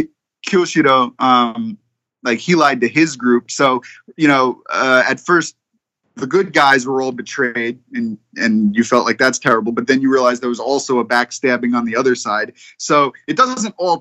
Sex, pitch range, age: male, 125-180 Hz, 30-49